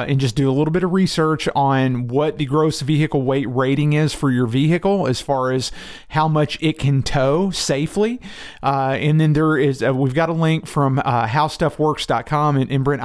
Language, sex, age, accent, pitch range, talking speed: English, male, 40-59, American, 130-155 Hz, 200 wpm